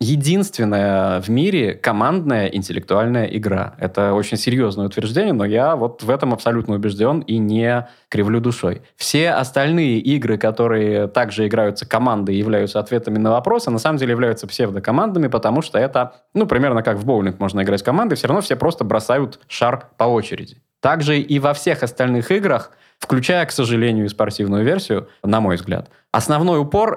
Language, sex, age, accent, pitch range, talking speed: Russian, male, 20-39, native, 110-140 Hz, 165 wpm